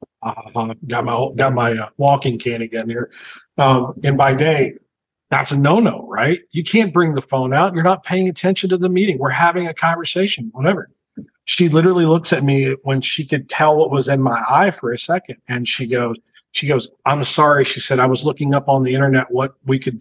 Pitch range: 130-160 Hz